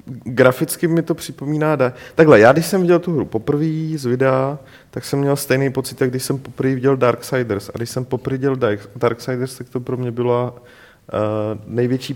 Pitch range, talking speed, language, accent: 115-135 Hz, 190 wpm, Czech, native